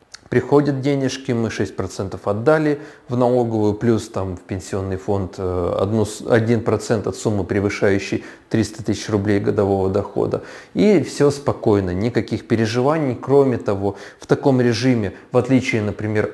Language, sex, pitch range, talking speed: Russian, male, 100-125 Hz, 125 wpm